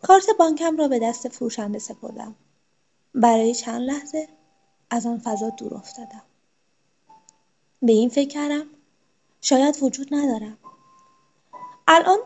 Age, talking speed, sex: 20-39, 110 wpm, female